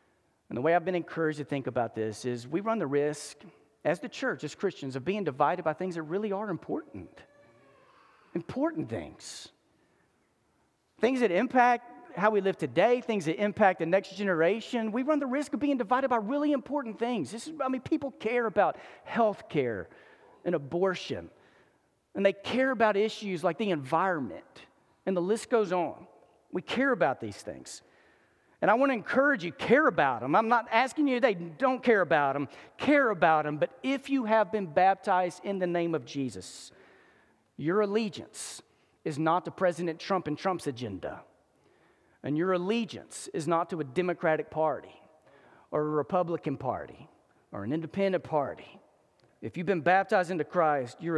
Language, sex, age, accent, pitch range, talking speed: English, male, 40-59, American, 160-230 Hz, 175 wpm